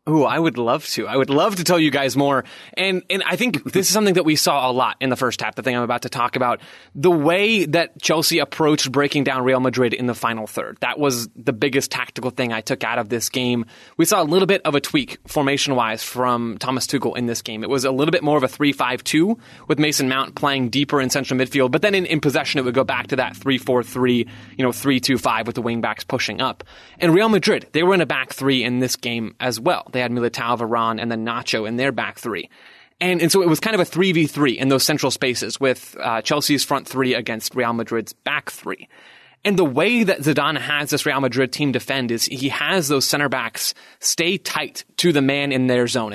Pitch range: 125-155 Hz